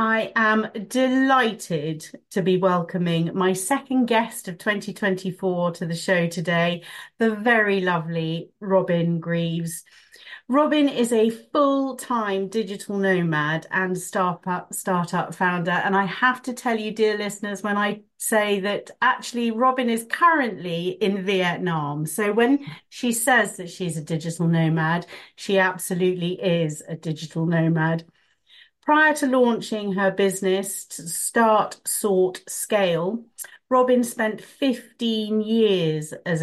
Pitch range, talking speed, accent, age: 175-220 Hz, 125 wpm, British, 40-59